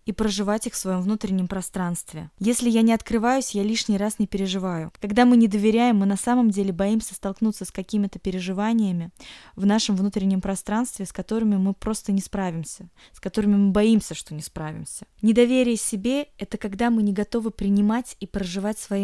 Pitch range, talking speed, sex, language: 190-225 Hz, 185 wpm, female, Russian